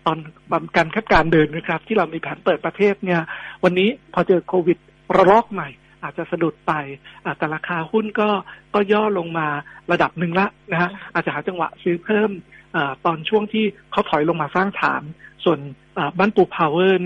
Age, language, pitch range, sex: 60-79, Thai, 160-195 Hz, male